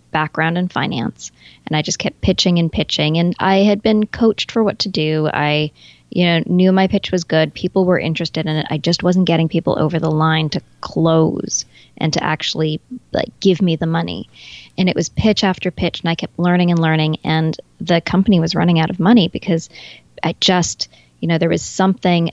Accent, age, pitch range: American, 20-39, 160-185 Hz